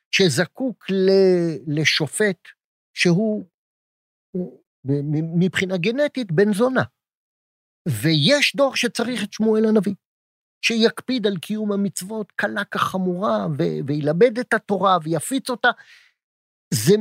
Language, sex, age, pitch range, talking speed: Hebrew, male, 50-69, 170-235 Hz, 90 wpm